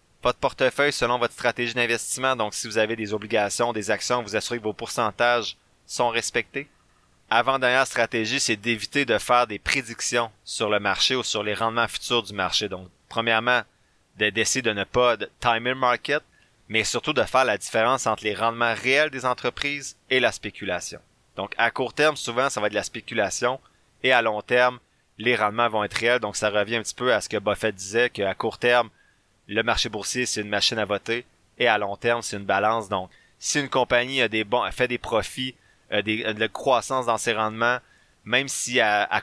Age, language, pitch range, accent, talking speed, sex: 30-49, French, 105-125 Hz, Canadian, 210 wpm, male